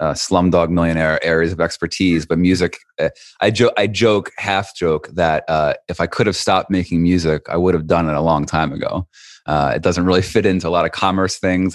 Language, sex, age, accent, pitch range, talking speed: English, male, 30-49, American, 80-100 Hz, 225 wpm